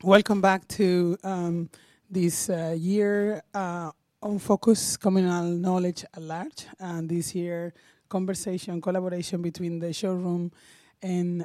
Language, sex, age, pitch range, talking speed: English, male, 20-39, 170-195 Hz, 120 wpm